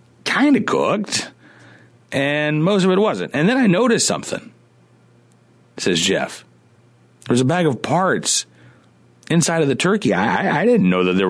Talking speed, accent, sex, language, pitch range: 160 wpm, American, male, English, 100-160 Hz